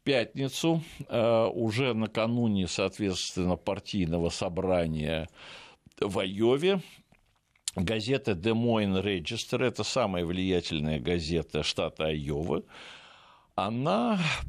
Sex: male